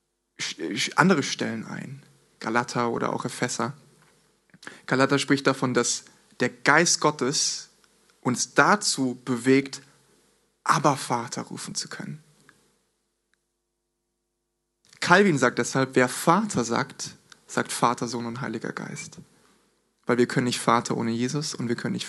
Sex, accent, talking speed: male, German, 120 wpm